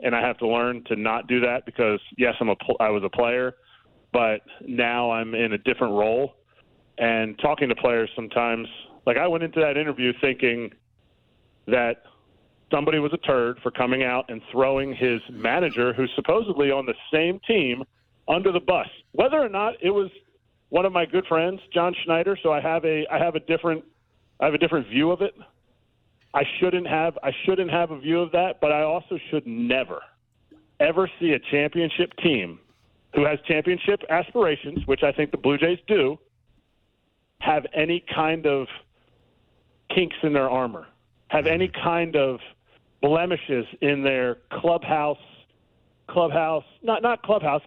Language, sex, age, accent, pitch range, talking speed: English, male, 40-59, American, 125-170 Hz, 170 wpm